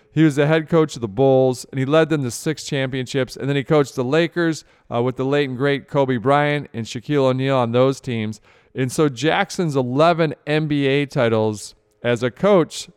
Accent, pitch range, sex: American, 120-155 Hz, male